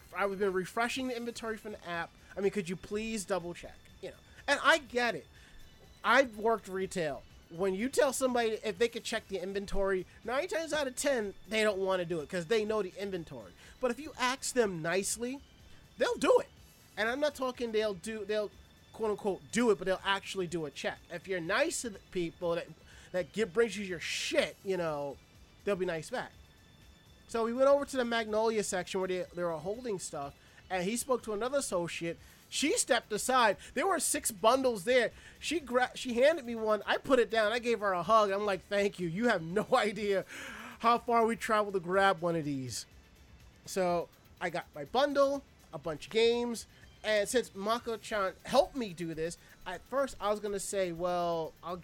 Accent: American